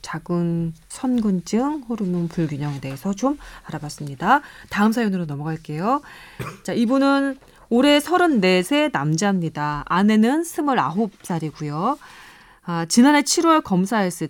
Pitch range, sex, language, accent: 165-245 Hz, female, Korean, native